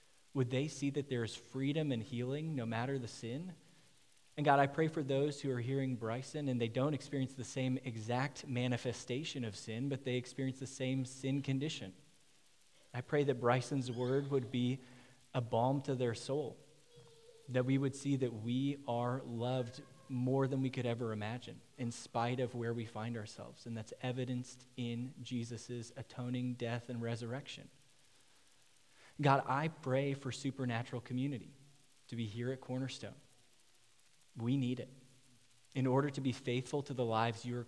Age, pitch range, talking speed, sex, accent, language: 20-39, 120-135 Hz, 170 wpm, male, American, English